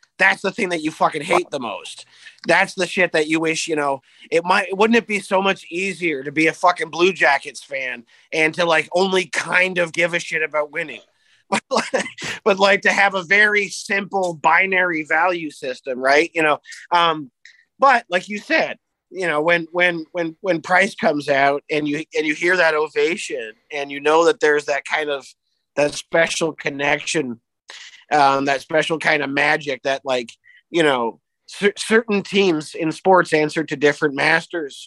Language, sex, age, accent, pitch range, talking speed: English, male, 30-49, American, 145-180 Hz, 185 wpm